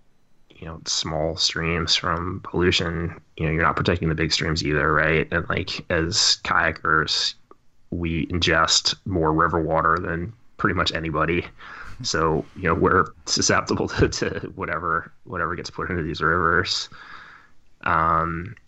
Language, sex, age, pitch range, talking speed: English, male, 20-39, 80-85 Hz, 140 wpm